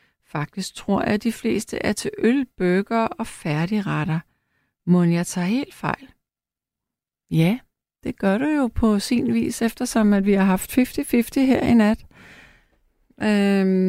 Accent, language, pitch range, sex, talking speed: native, Danish, 185-245 Hz, female, 145 wpm